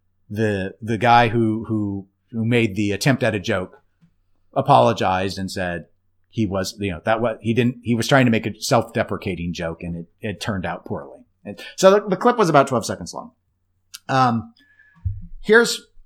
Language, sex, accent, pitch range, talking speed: English, male, American, 95-120 Hz, 185 wpm